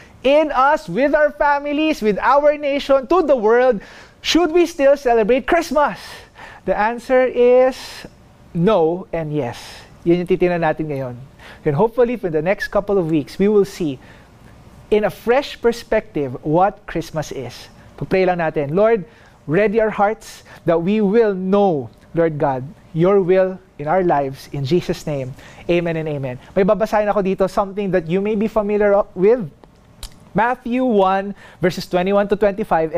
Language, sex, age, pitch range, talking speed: English, male, 20-39, 170-250 Hz, 155 wpm